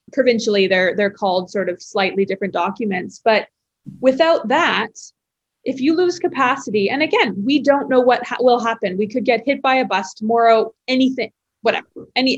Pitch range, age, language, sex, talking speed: 205-255 Hz, 20-39, English, female, 170 wpm